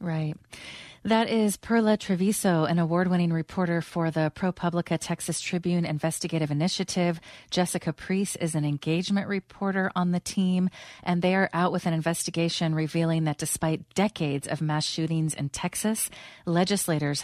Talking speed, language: 145 wpm, English